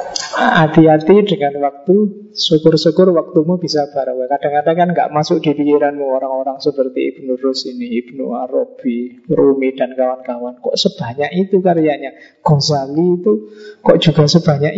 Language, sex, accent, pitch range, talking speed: Indonesian, male, native, 145-185 Hz, 125 wpm